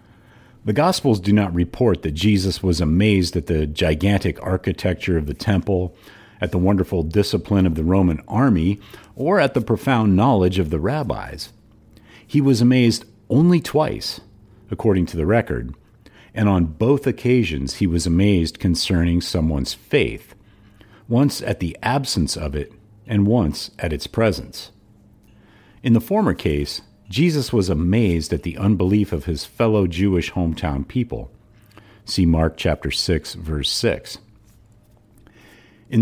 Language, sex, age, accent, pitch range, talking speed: English, male, 50-69, American, 85-110 Hz, 140 wpm